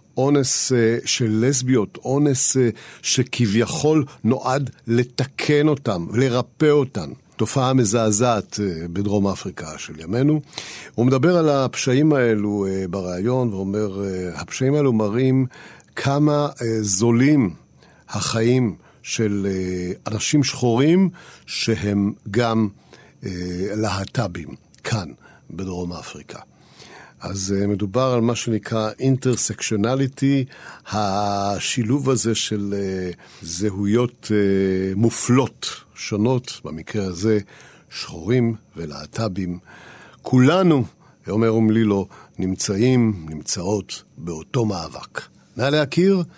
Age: 50-69